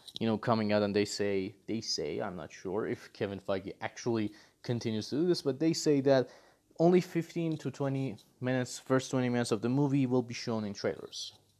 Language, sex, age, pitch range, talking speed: English, male, 30-49, 115-150 Hz, 205 wpm